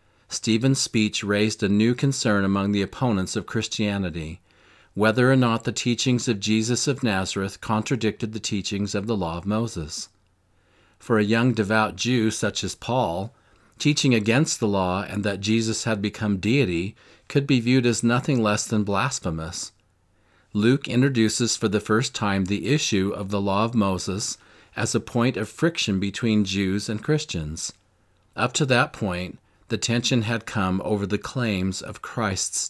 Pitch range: 95-115 Hz